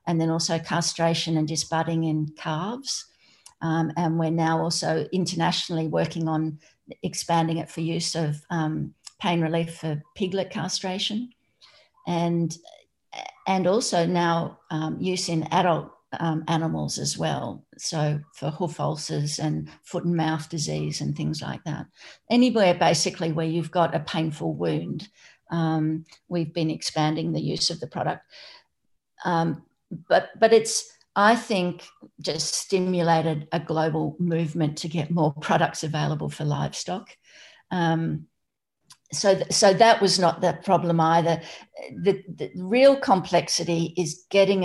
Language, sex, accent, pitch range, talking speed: English, female, Australian, 160-180 Hz, 135 wpm